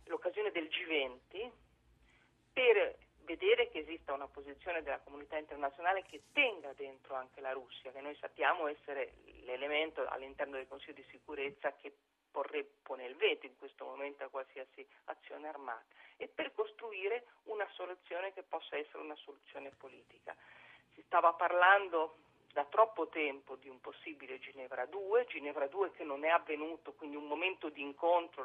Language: Italian